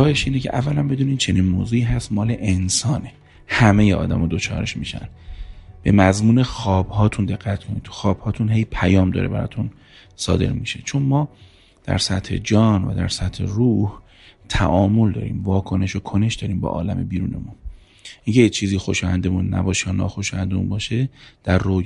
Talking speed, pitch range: 155 wpm, 95-120 Hz